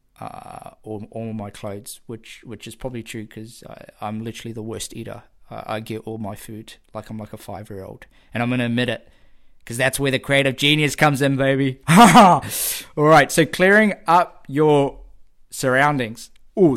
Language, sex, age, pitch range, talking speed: English, male, 20-39, 110-140 Hz, 175 wpm